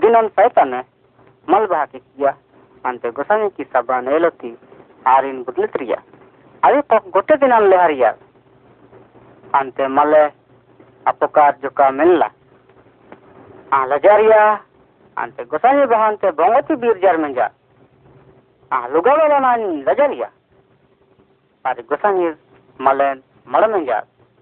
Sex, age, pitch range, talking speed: female, 40-59, 130-220 Hz, 80 wpm